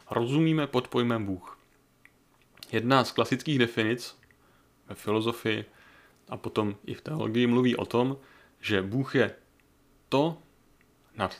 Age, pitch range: 30-49, 105-135 Hz